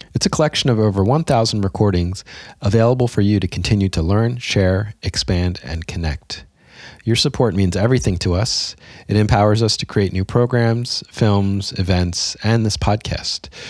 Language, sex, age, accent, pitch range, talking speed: English, male, 30-49, American, 90-115 Hz, 160 wpm